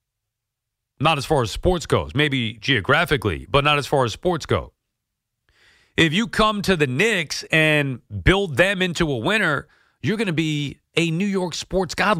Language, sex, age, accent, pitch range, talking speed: English, male, 40-59, American, 120-180 Hz, 175 wpm